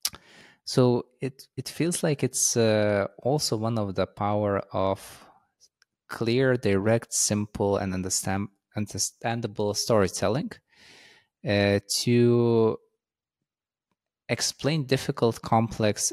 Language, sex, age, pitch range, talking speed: English, male, 20-39, 100-125 Hz, 90 wpm